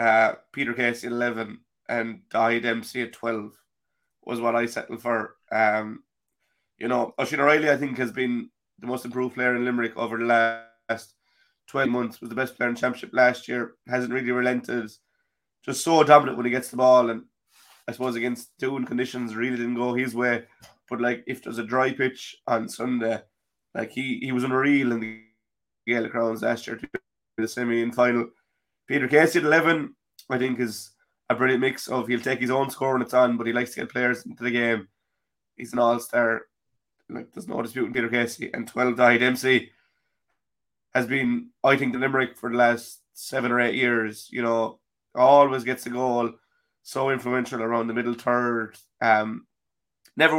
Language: English